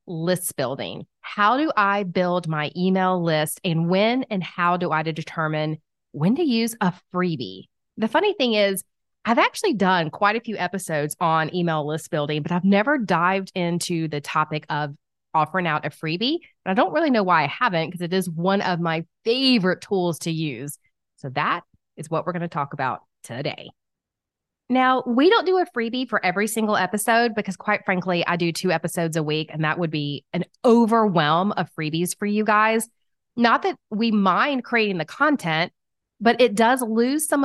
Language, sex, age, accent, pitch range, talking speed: English, female, 30-49, American, 160-220 Hz, 185 wpm